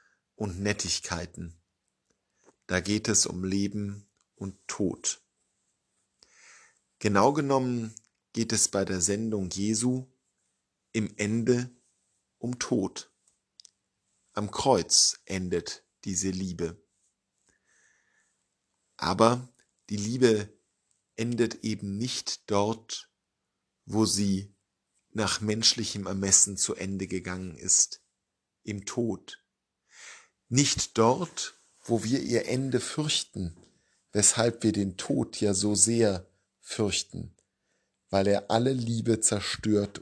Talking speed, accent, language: 95 wpm, German, German